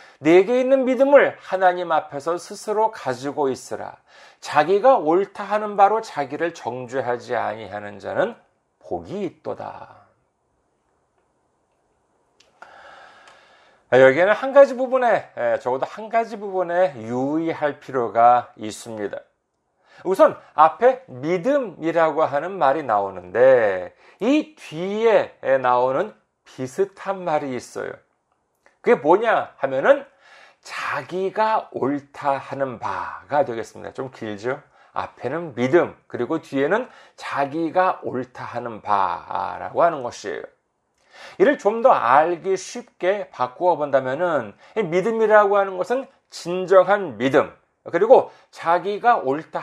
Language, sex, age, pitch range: Korean, male, 40-59, 140-230 Hz